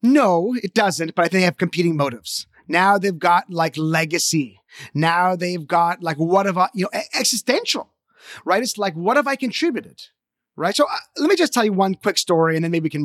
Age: 30-49